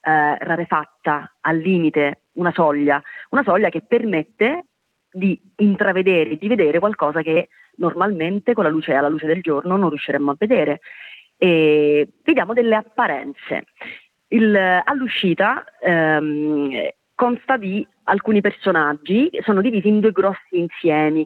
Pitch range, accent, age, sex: 160-210 Hz, native, 30-49, female